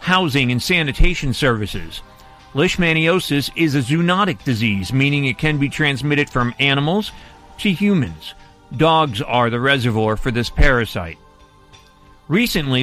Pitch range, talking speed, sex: 115-145 Hz, 120 wpm, male